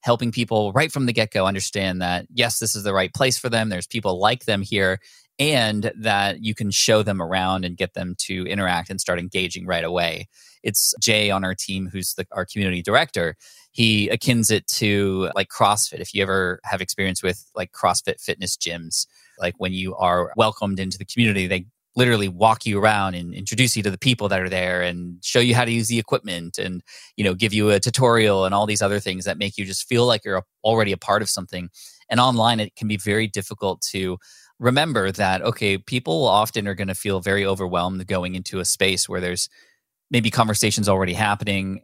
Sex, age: male, 20-39